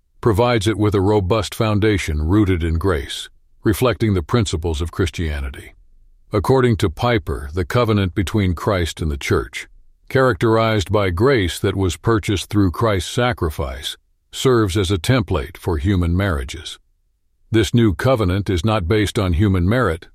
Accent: American